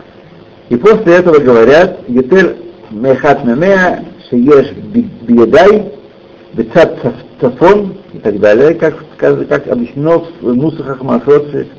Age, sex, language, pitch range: 60-79, male, Russian, 125-170 Hz